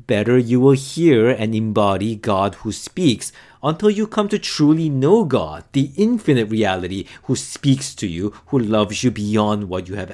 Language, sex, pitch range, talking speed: English, male, 110-155 Hz, 180 wpm